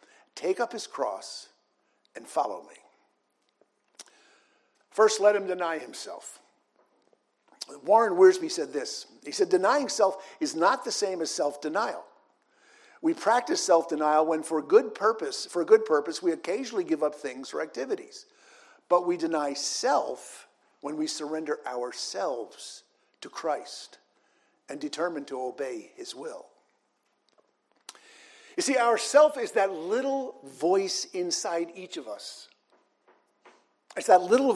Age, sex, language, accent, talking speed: 50-69, male, English, American, 130 wpm